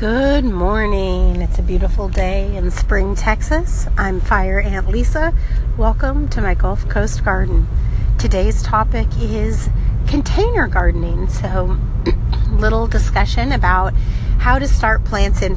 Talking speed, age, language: 130 wpm, 30-49, English